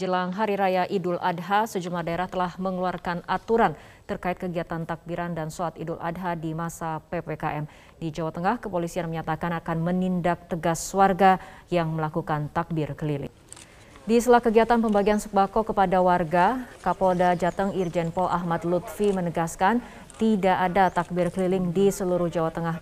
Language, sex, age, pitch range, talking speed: Indonesian, female, 20-39, 165-190 Hz, 145 wpm